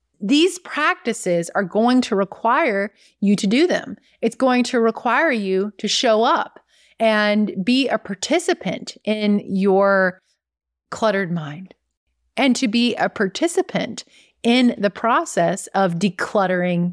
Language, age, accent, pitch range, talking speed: English, 30-49, American, 195-245 Hz, 130 wpm